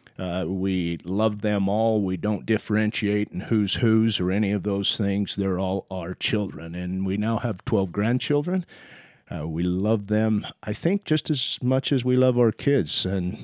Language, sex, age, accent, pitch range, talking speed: English, male, 40-59, American, 95-120 Hz, 185 wpm